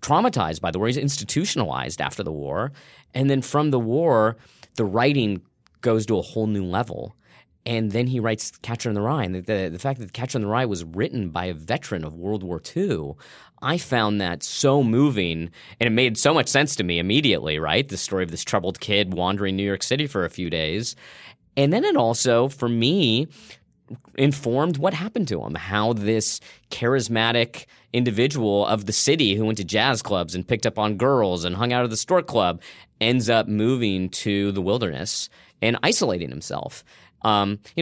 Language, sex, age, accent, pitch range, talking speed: English, male, 30-49, American, 95-125 Hz, 195 wpm